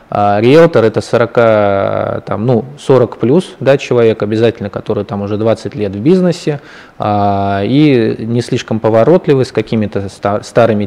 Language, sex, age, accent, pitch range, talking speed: Russian, male, 20-39, native, 105-125 Hz, 115 wpm